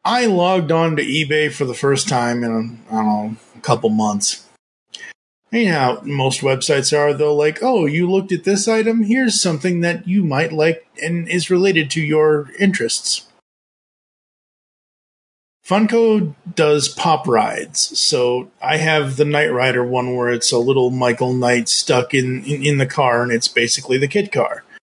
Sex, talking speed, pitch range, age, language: male, 165 wpm, 135-185 Hz, 30-49, English